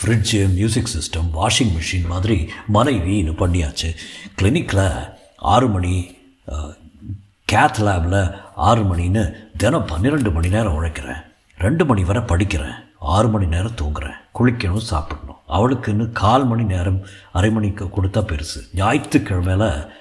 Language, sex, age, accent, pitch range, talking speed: Tamil, male, 60-79, native, 85-110 Hz, 115 wpm